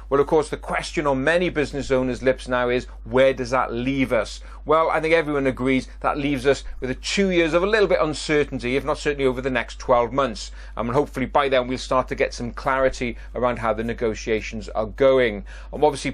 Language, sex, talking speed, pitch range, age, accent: English, male, 225 wpm, 125-155 Hz, 40-59, British